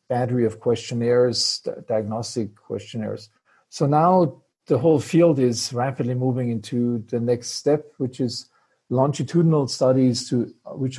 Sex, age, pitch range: male, 50-69, 115-135 Hz